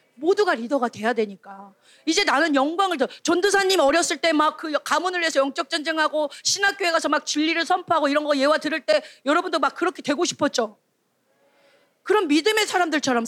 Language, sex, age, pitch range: Korean, female, 30-49, 275-375 Hz